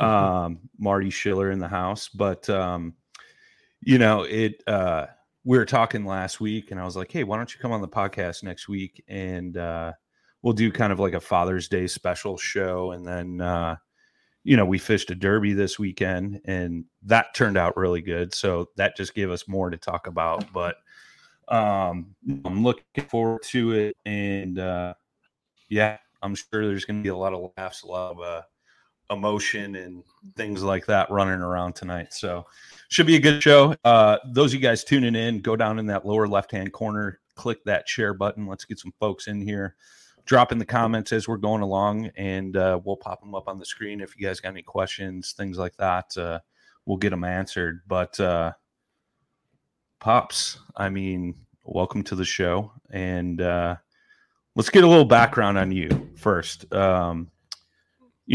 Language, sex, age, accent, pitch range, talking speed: English, male, 30-49, American, 90-110 Hz, 185 wpm